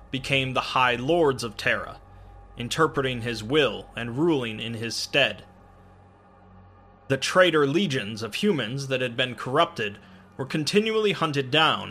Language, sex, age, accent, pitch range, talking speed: English, male, 20-39, American, 100-145 Hz, 135 wpm